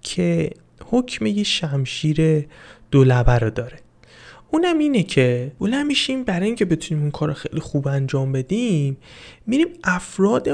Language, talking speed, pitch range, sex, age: Persian, 140 wpm, 135-185 Hz, male, 20-39